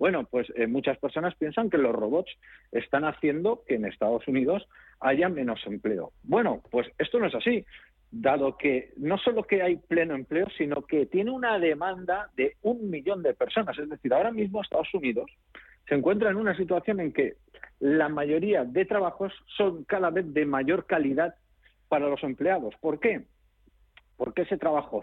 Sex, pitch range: male, 130-185 Hz